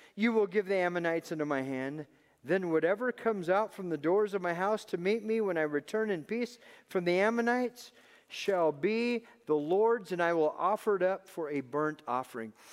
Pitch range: 170-235 Hz